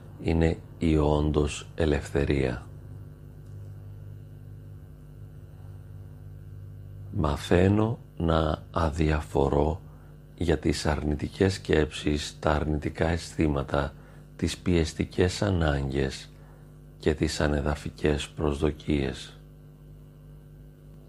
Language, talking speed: Greek, 60 wpm